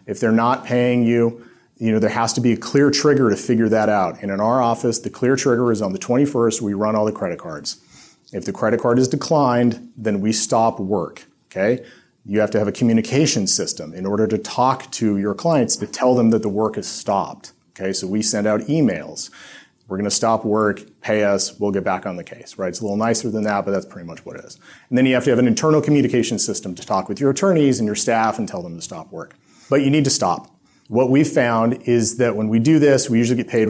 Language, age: English, 40-59